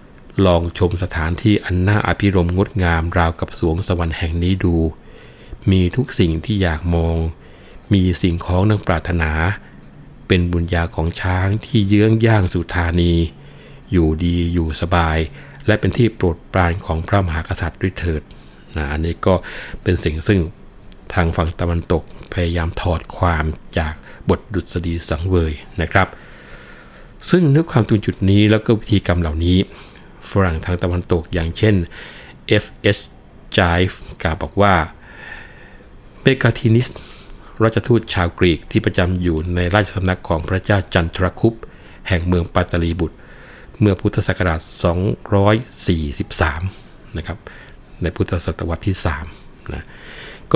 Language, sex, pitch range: Thai, male, 85-100 Hz